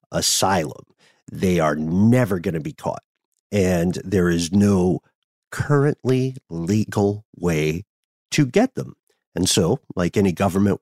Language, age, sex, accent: English, 50-69, male, American